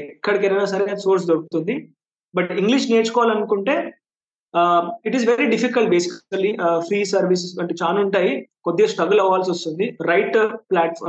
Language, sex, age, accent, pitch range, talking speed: Telugu, male, 20-39, native, 175-225 Hz, 125 wpm